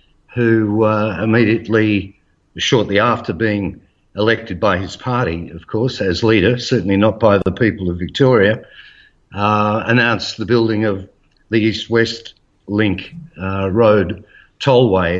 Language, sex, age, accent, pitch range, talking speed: English, male, 60-79, Australian, 100-120 Hz, 130 wpm